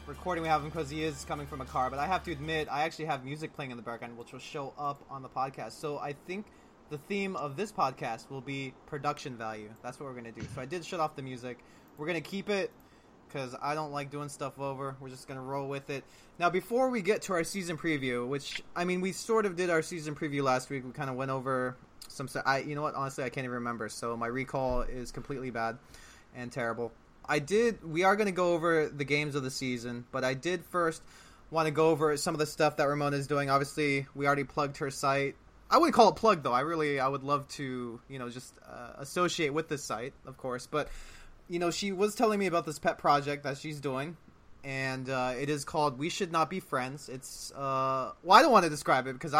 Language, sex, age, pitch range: English, male, 20-39, 130-160 Hz